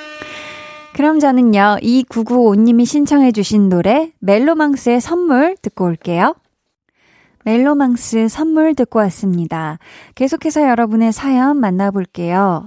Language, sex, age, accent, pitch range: Korean, female, 20-39, native, 190-265 Hz